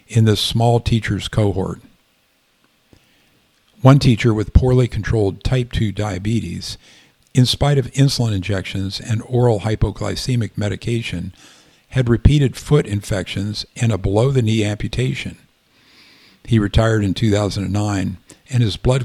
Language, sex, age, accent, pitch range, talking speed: English, male, 50-69, American, 100-120 Hz, 115 wpm